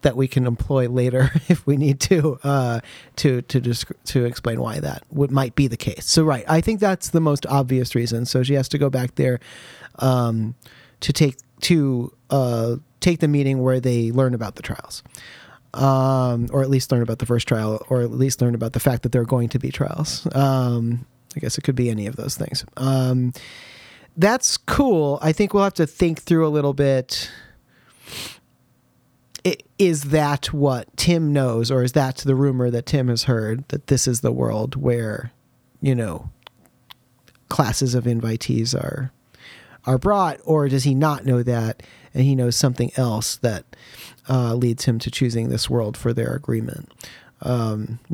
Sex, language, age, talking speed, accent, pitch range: male, English, 30-49, 185 wpm, American, 120-140 Hz